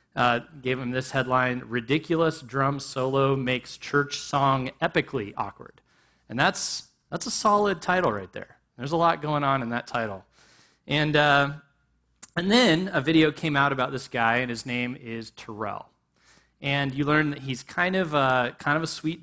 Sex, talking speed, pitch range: male, 180 wpm, 120-155 Hz